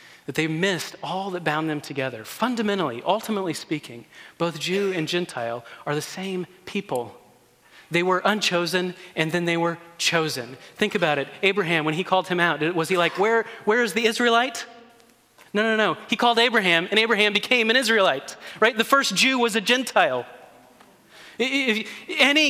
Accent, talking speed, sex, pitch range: American, 170 wpm, male, 140-215 Hz